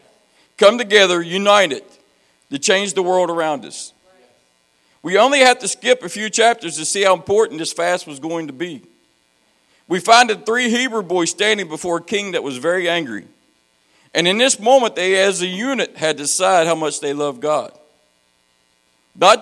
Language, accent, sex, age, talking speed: English, American, male, 50-69, 180 wpm